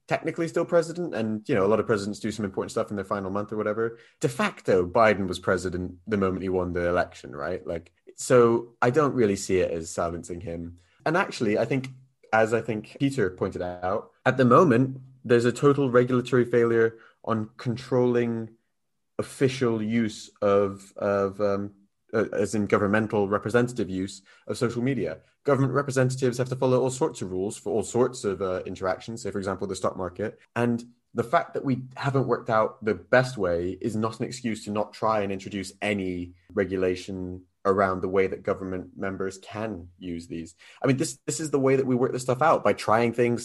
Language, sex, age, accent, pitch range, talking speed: English, male, 20-39, British, 100-125 Hz, 200 wpm